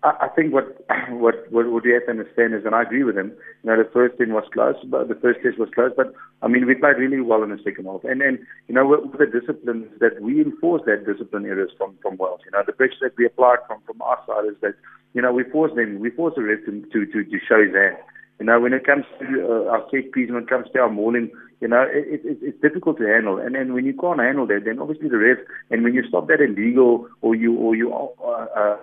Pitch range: 110-135 Hz